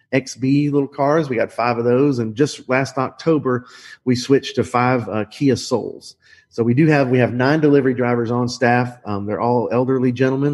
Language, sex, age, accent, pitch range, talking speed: English, male, 40-59, American, 115-140 Hz, 200 wpm